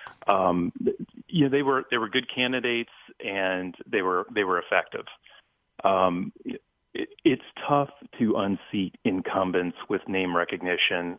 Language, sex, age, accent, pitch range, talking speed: English, male, 40-59, American, 95-125 Hz, 135 wpm